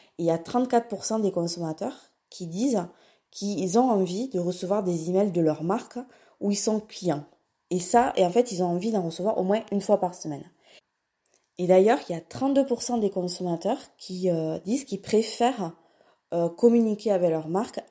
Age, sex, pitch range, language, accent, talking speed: 20-39, female, 170-220 Hz, French, French, 190 wpm